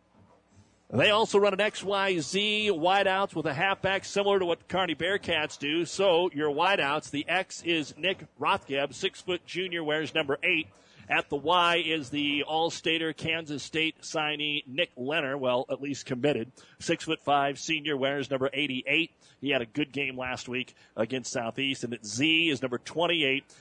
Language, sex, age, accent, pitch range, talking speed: English, male, 40-59, American, 140-170 Hz, 170 wpm